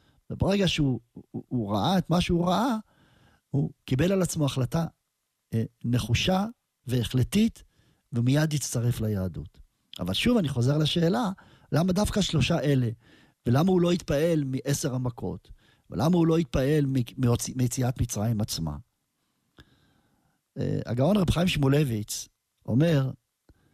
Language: Hebrew